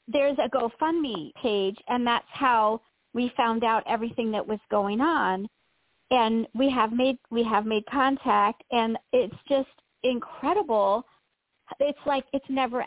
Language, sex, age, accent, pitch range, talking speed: English, female, 50-69, American, 225-275 Hz, 145 wpm